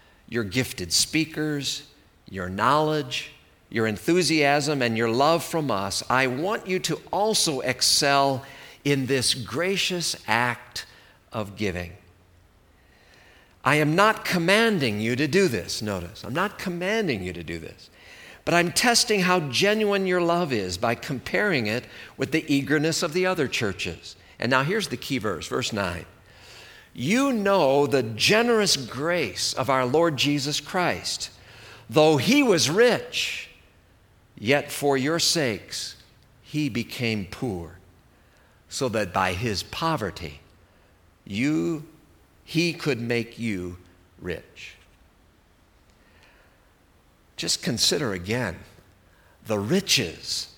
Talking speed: 120 wpm